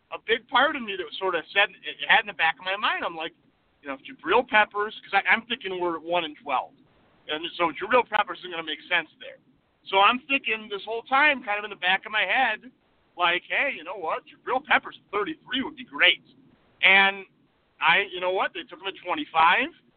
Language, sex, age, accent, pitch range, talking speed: English, male, 40-59, American, 165-235 Hz, 230 wpm